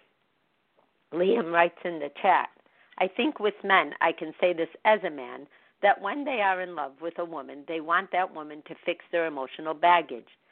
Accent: American